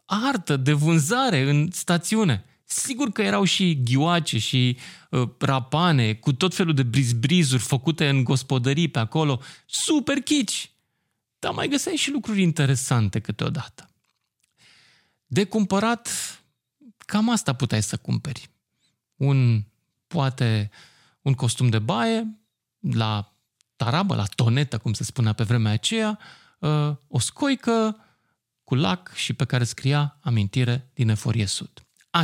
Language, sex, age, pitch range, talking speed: Romanian, male, 30-49, 115-170 Hz, 130 wpm